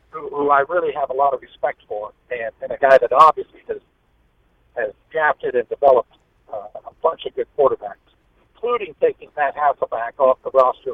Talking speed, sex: 180 wpm, male